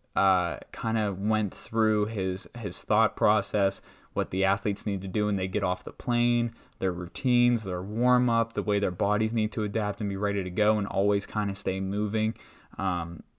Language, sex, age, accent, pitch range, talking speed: English, male, 20-39, American, 95-110 Hz, 195 wpm